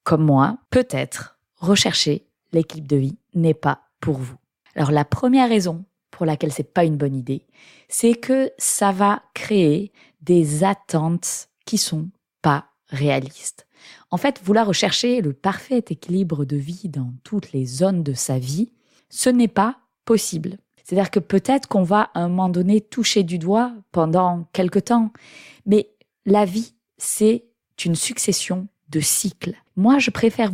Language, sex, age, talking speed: French, female, 20-39, 155 wpm